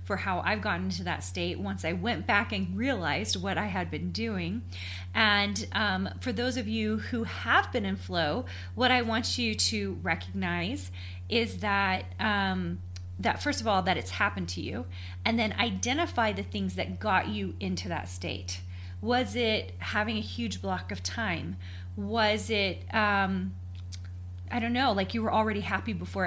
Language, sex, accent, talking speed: English, female, American, 180 wpm